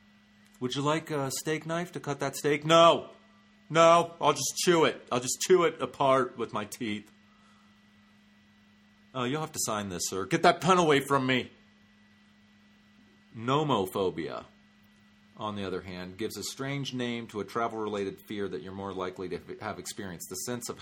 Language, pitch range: English, 105-135 Hz